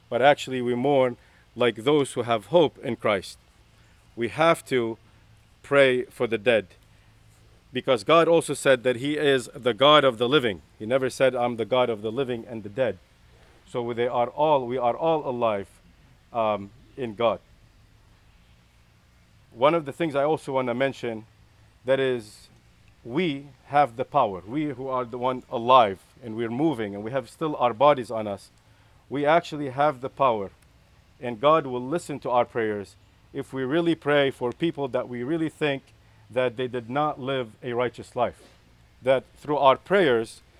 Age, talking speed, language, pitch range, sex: 40-59, 175 wpm, English, 110-140 Hz, male